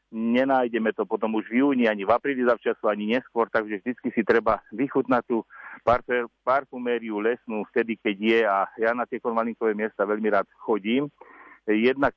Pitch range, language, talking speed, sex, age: 105-120 Hz, Slovak, 165 wpm, male, 50-69